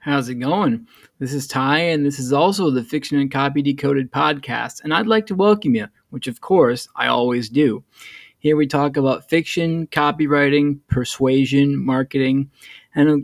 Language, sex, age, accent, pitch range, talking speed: English, male, 20-39, American, 130-150 Hz, 170 wpm